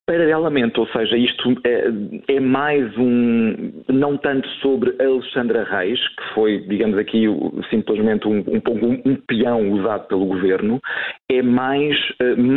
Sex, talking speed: male, 130 wpm